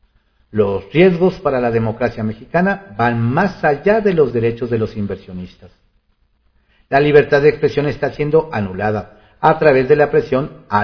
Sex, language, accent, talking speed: male, Spanish, Mexican, 155 wpm